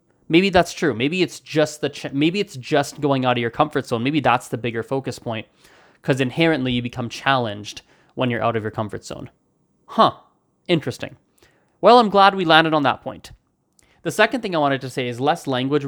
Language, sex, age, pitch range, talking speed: English, male, 20-39, 125-155 Hz, 210 wpm